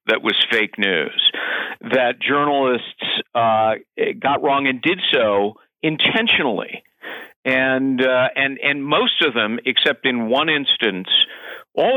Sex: male